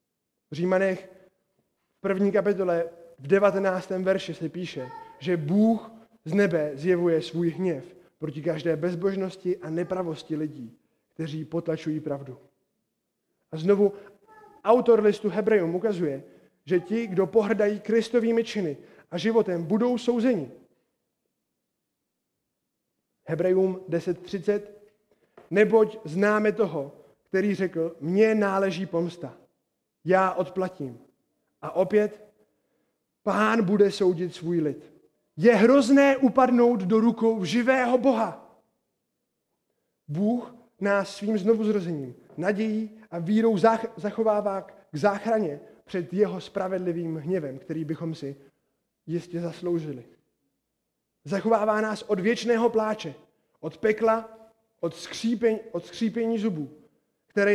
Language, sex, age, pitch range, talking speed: Czech, male, 20-39, 170-220 Hz, 105 wpm